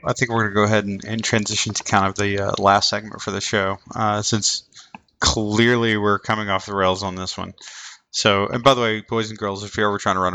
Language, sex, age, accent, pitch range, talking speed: English, male, 20-39, American, 95-110 Hz, 260 wpm